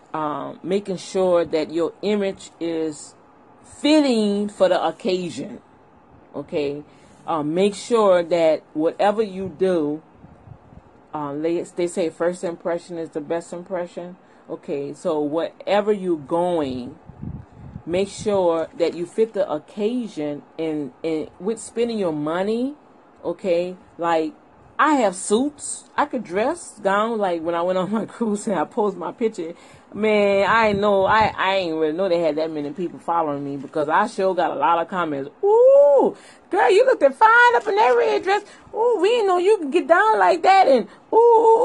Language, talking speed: English, 160 wpm